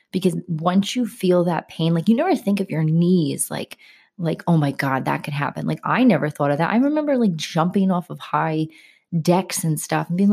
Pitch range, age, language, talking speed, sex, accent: 160-210 Hz, 20-39, English, 225 wpm, female, American